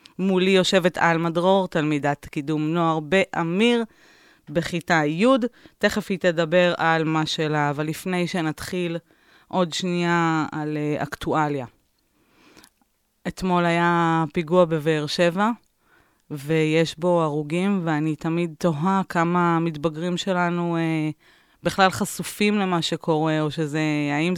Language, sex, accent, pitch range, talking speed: Hebrew, female, native, 145-175 Hz, 115 wpm